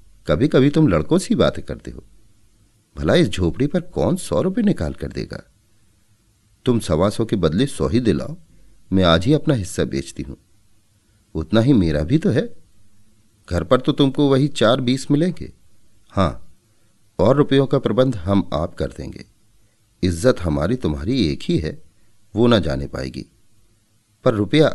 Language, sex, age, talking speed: Hindi, male, 40-59, 160 wpm